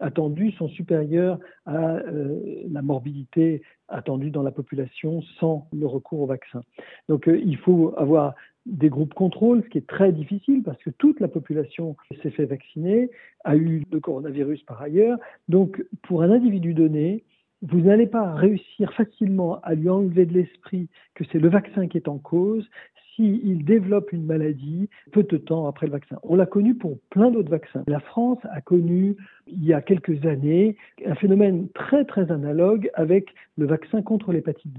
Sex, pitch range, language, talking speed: male, 150-195 Hz, French, 175 wpm